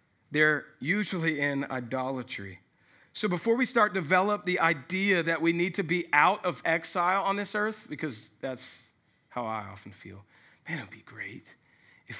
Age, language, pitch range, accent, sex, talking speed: 40-59, English, 125-180 Hz, American, male, 165 wpm